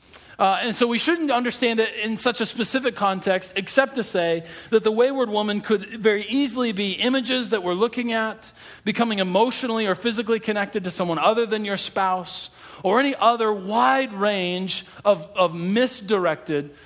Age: 40-59